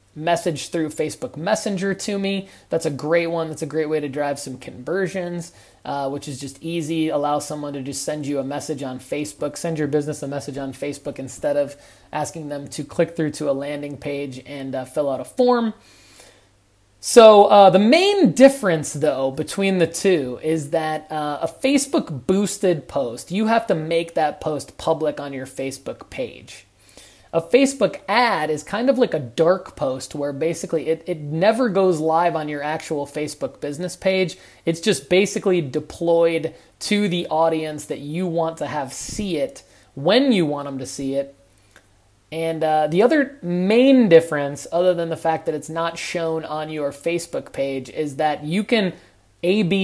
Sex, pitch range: male, 145-180 Hz